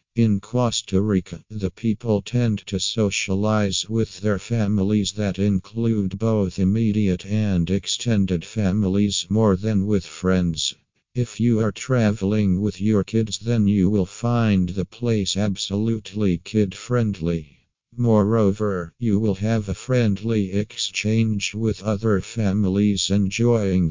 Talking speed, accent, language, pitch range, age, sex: 120 wpm, American, English, 95-110 Hz, 50-69, male